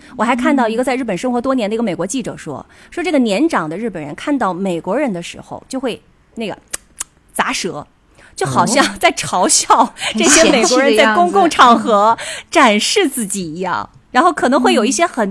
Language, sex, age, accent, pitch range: Chinese, female, 30-49, native, 190-290 Hz